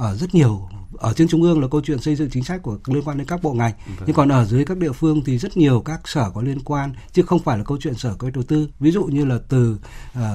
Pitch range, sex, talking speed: 115-145 Hz, male, 300 wpm